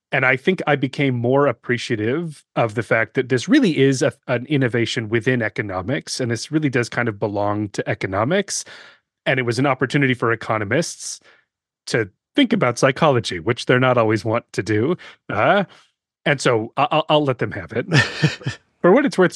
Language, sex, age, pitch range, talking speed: English, male, 30-49, 115-150 Hz, 180 wpm